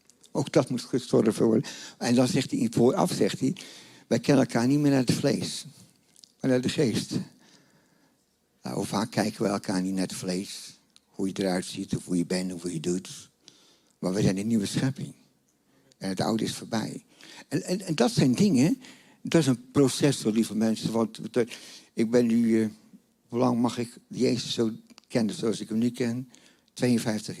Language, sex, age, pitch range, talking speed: Dutch, male, 60-79, 105-155 Hz, 200 wpm